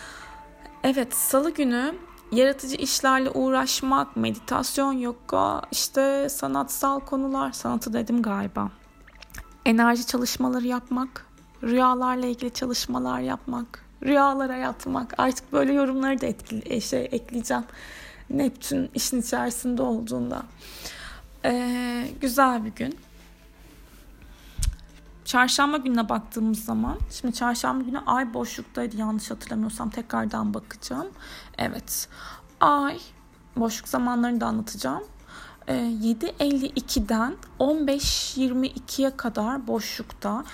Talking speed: 90 wpm